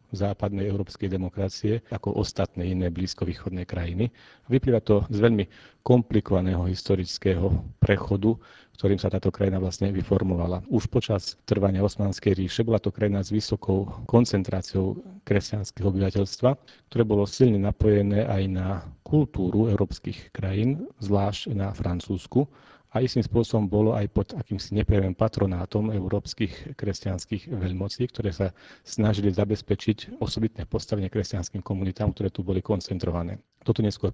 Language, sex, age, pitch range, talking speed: Czech, male, 40-59, 95-110 Hz, 125 wpm